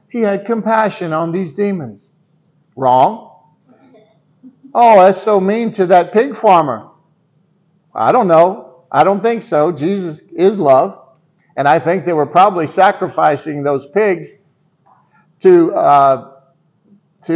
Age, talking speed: 50-69, 120 wpm